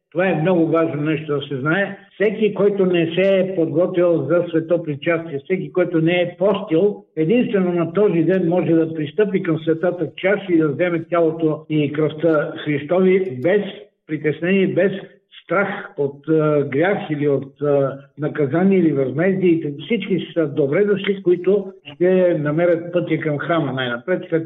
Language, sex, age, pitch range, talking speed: Bulgarian, male, 60-79, 150-190 Hz, 155 wpm